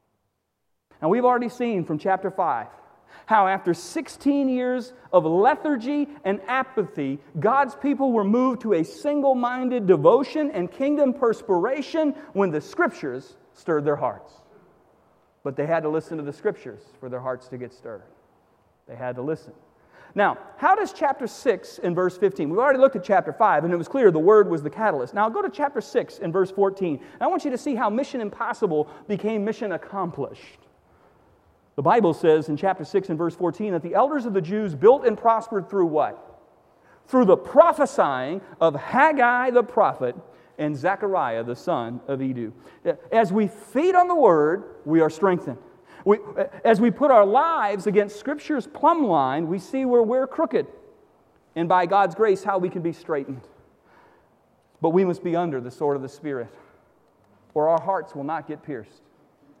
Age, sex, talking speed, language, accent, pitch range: 40-59, male, 175 wpm, English, American, 165-255 Hz